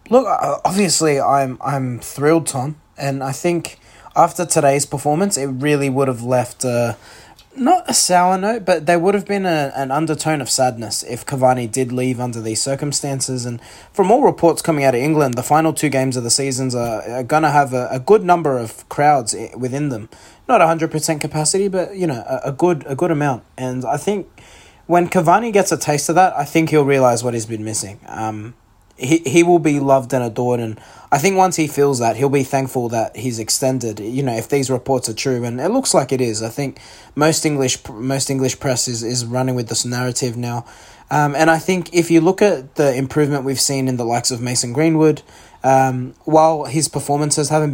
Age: 20-39